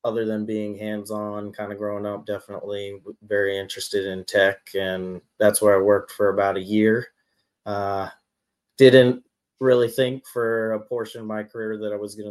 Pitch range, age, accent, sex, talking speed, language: 100-110 Hz, 30-49, American, male, 175 wpm, English